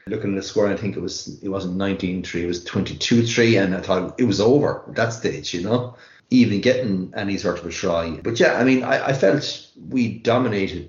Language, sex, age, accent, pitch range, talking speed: English, male, 30-49, Irish, 95-120 Hz, 240 wpm